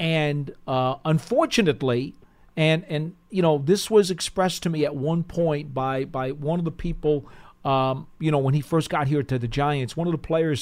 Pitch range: 145-175 Hz